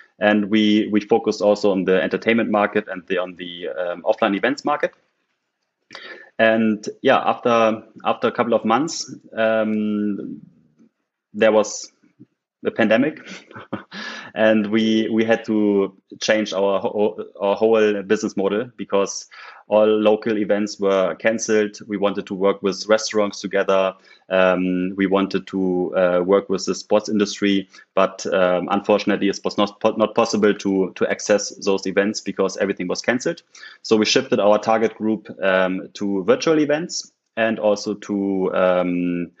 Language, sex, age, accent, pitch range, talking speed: English, male, 20-39, German, 95-110 Hz, 145 wpm